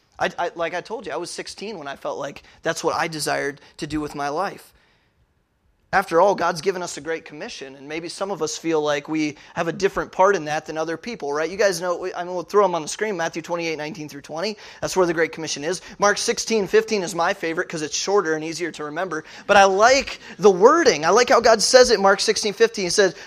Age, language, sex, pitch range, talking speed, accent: 20-39, English, male, 160-220 Hz, 255 wpm, American